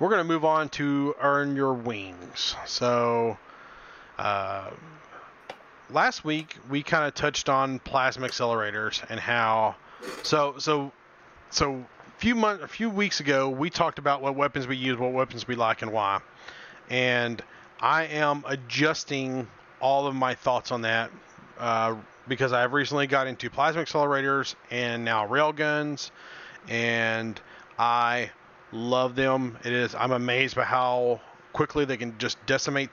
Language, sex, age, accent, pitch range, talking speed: English, male, 30-49, American, 120-150 Hz, 150 wpm